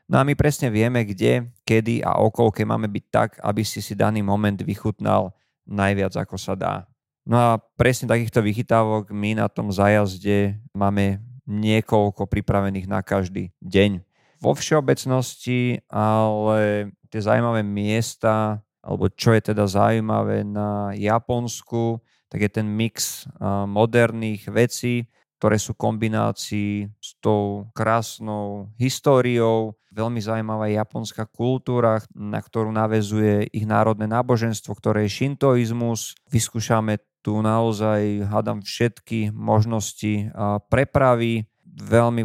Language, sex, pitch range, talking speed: Slovak, male, 105-115 Hz, 120 wpm